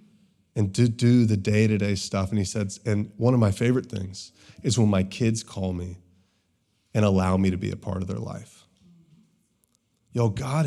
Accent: American